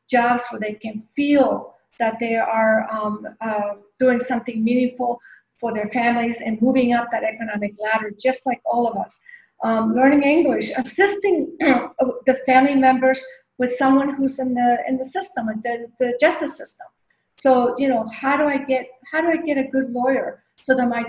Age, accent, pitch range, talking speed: 50-69, American, 235-275 Hz, 180 wpm